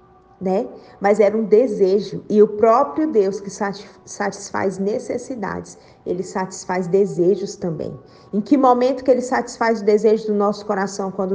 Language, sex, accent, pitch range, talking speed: Portuguese, female, Brazilian, 200-250 Hz, 150 wpm